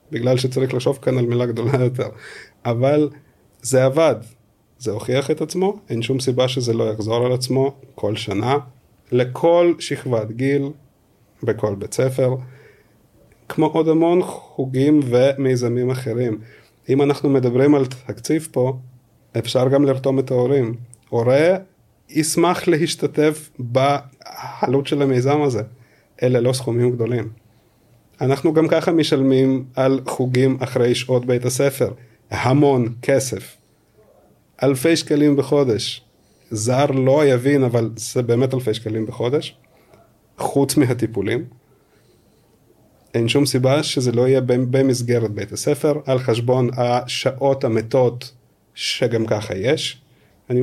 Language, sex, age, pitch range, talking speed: Hebrew, male, 30-49, 120-140 Hz, 120 wpm